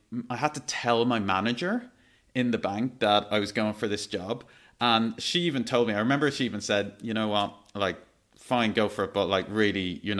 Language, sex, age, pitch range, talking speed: English, male, 30-49, 105-160 Hz, 225 wpm